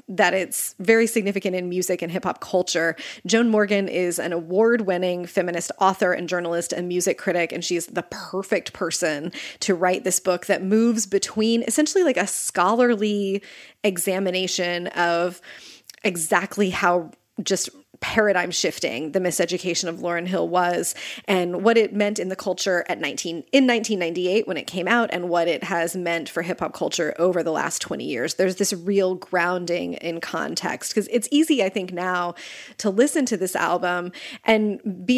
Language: English